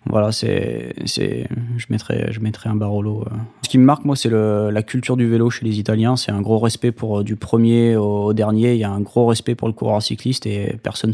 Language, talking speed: French, 250 wpm